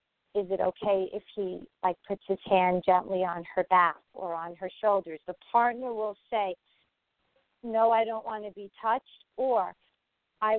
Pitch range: 185-220 Hz